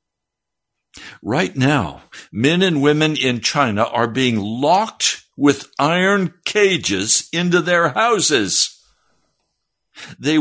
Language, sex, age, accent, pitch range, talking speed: English, male, 60-79, American, 105-150 Hz, 100 wpm